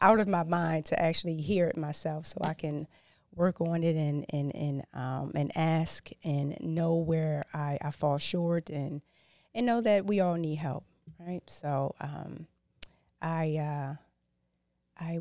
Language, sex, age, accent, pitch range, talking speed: English, female, 30-49, American, 150-175 Hz, 165 wpm